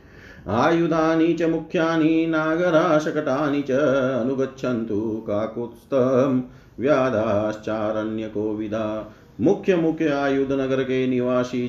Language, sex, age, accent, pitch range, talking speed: Hindi, male, 40-59, native, 110-145 Hz, 65 wpm